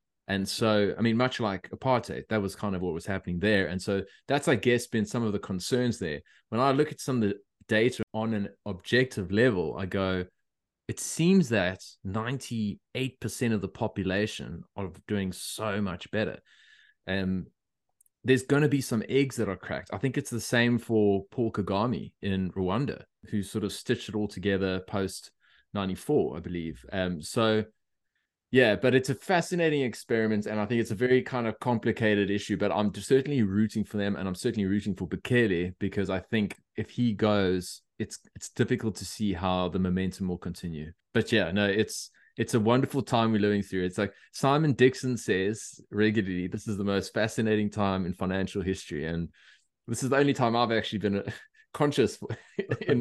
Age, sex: 20-39, male